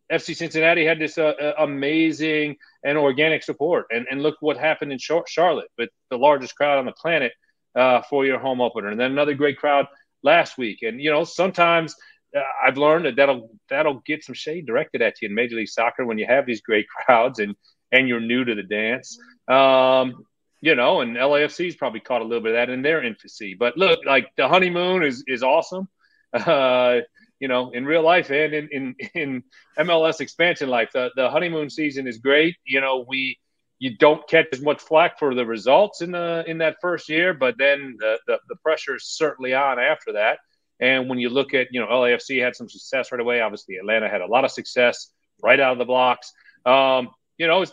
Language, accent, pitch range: English, American, 125-165 Hz